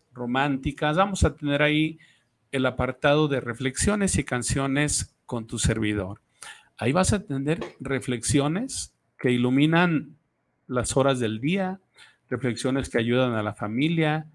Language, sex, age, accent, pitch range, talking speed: Spanish, male, 50-69, Mexican, 120-155 Hz, 130 wpm